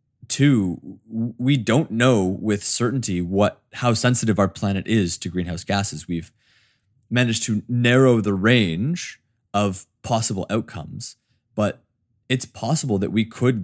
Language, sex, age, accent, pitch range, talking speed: English, male, 20-39, American, 100-125 Hz, 130 wpm